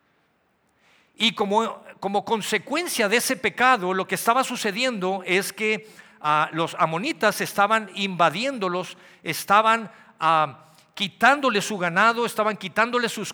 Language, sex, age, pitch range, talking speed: Spanish, male, 50-69, 155-220 Hz, 110 wpm